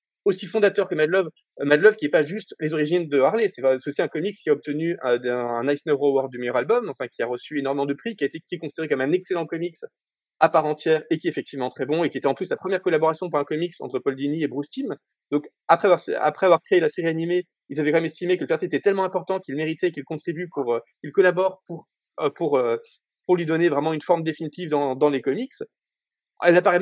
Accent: French